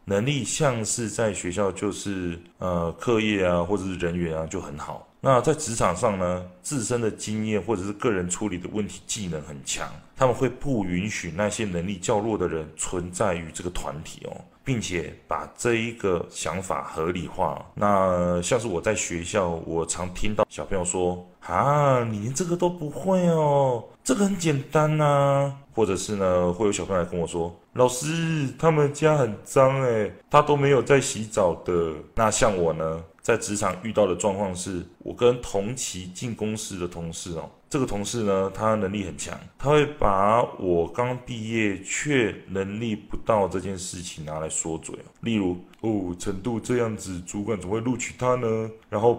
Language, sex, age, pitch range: Chinese, male, 20-39, 90-120 Hz